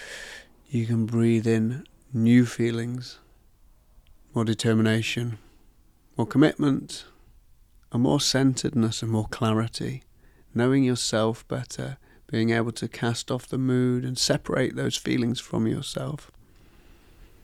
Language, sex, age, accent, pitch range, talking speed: English, male, 30-49, British, 110-120 Hz, 110 wpm